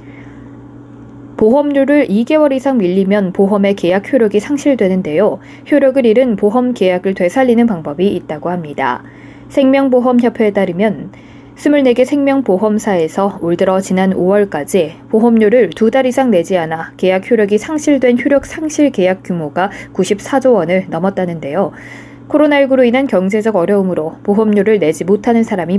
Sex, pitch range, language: female, 175-240 Hz, Korean